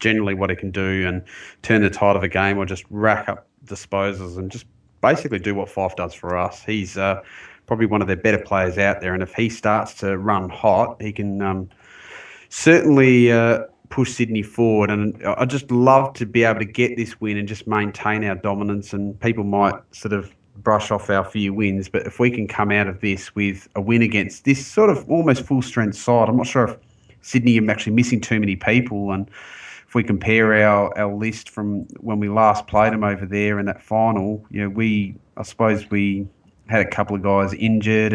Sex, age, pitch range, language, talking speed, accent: male, 30-49, 100-115 Hz, English, 215 wpm, Australian